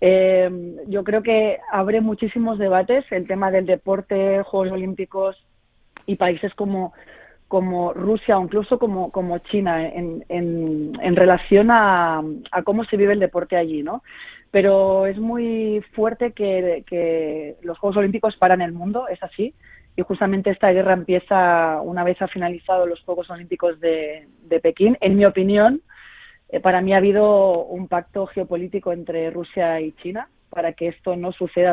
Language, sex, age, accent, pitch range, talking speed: Spanish, female, 20-39, Spanish, 175-210 Hz, 160 wpm